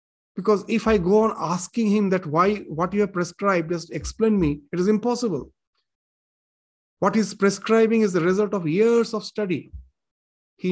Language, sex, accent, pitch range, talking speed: English, male, Indian, 170-215 Hz, 170 wpm